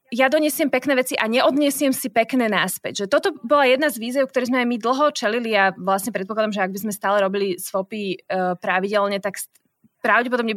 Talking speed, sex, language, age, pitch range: 200 wpm, female, Slovak, 20-39, 215-295 Hz